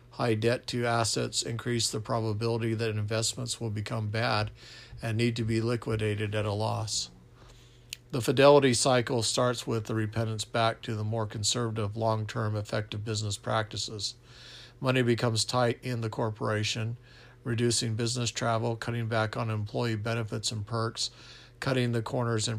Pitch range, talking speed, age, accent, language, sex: 110-125 Hz, 150 wpm, 50-69, American, English, male